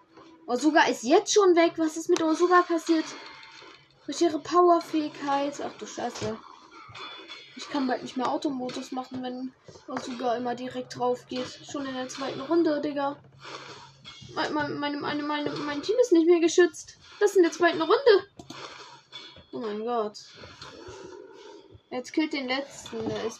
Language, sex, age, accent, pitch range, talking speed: German, female, 10-29, German, 225-330 Hz, 150 wpm